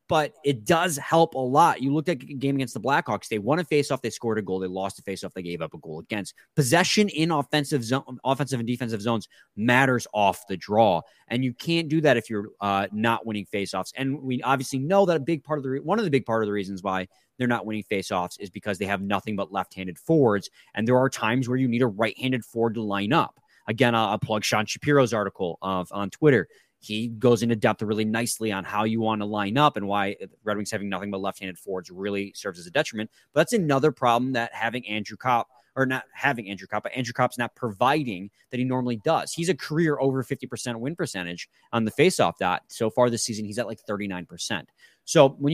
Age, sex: 20-39, male